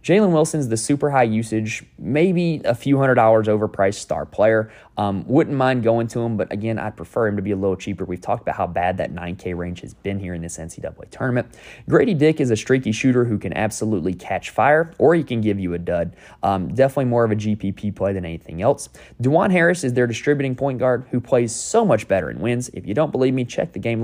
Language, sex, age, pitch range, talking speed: English, male, 20-39, 95-130 Hz, 240 wpm